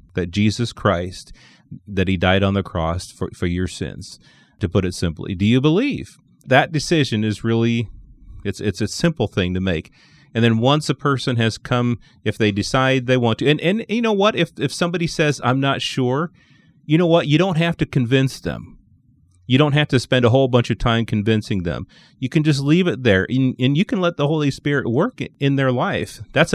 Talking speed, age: 220 wpm, 30-49